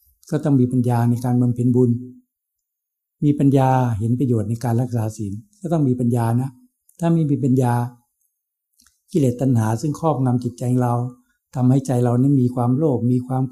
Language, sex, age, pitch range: Thai, male, 60-79, 120-145 Hz